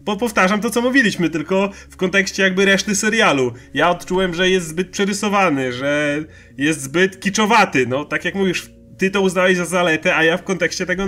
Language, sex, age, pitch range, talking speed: Polish, male, 30-49, 160-190 Hz, 190 wpm